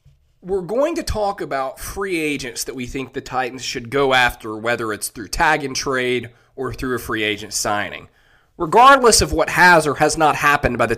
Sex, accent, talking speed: male, American, 190 wpm